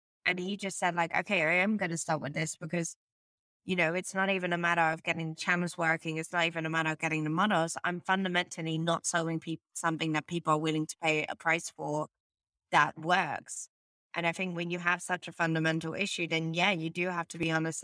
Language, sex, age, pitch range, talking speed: English, female, 20-39, 160-180 Hz, 230 wpm